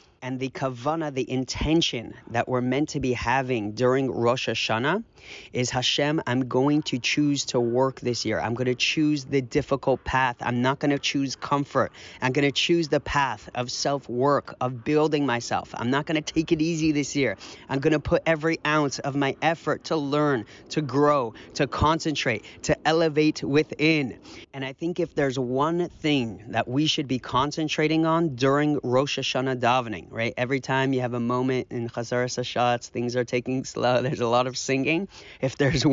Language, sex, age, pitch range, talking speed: English, male, 30-49, 125-150 Hz, 190 wpm